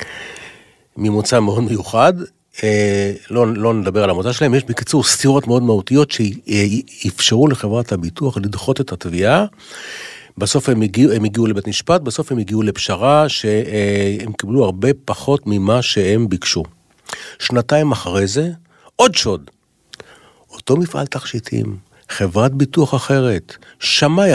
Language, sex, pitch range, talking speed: Hebrew, male, 100-135 Hz, 125 wpm